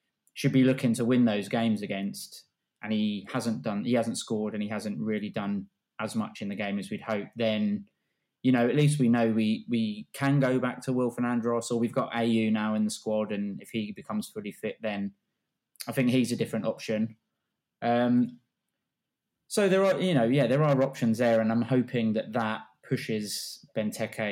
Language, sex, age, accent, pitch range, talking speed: English, male, 20-39, British, 105-130 Hz, 205 wpm